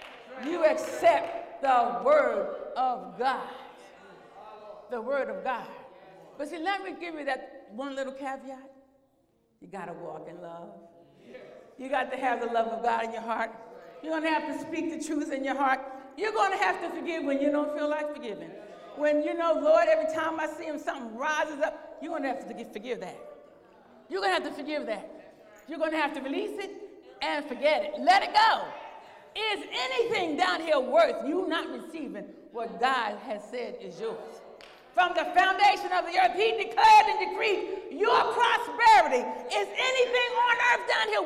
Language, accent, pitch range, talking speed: English, American, 270-360 Hz, 190 wpm